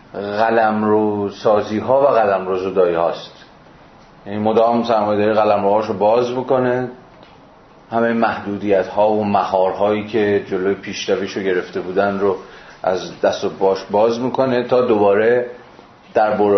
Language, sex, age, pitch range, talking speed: Persian, male, 40-59, 100-120 Hz, 140 wpm